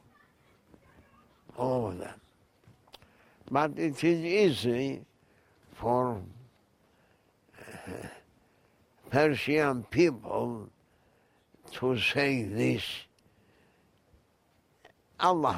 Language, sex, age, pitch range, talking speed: English, male, 60-79, 105-145 Hz, 60 wpm